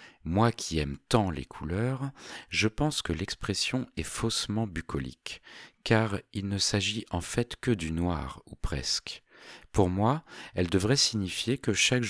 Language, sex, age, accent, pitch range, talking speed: French, male, 40-59, French, 75-95 Hz, 155 wpm